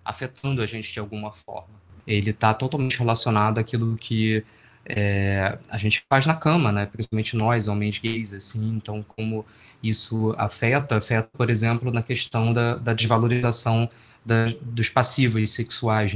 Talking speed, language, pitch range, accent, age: 150 wpm, Portuguese, 105-120 Hz, Brazilian, 20-39